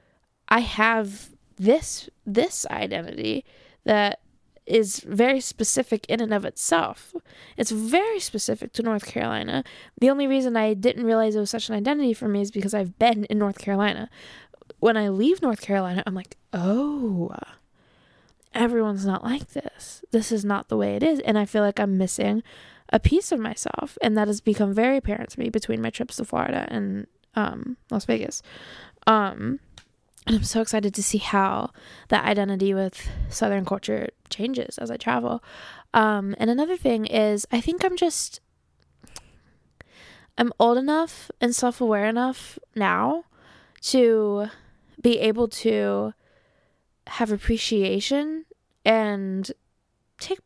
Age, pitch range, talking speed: 10-29, 205-255 Hz, 150 wpm